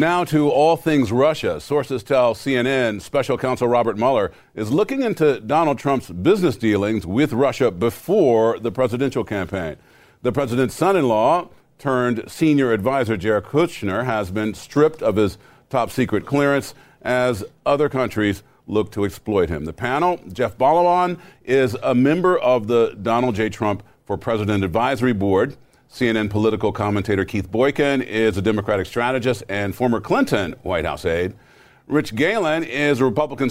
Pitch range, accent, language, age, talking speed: 110-145 Hz, American, English, 40-59, 150 wpm